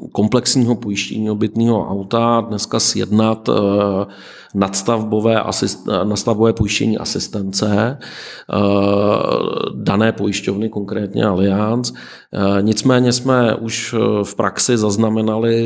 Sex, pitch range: male, 105-115 Hz